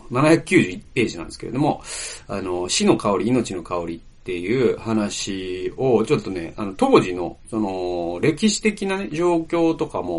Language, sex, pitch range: Japanese, male, 105-160 Hz